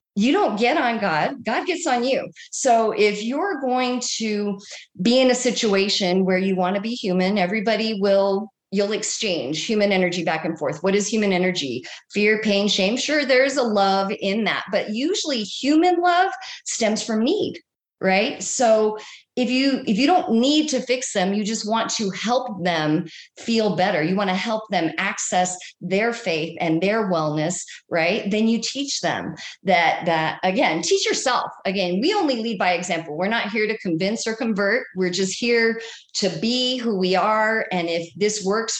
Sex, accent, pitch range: female, American, 190-240 Hz